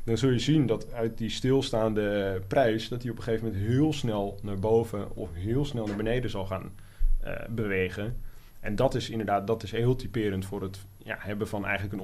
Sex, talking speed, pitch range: male, 215 wpm, 95-115 Hz